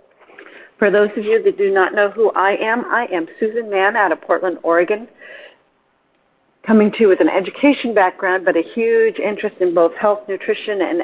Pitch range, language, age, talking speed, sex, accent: 175-220 Hz, English, 50-69, 190 wpm, female, American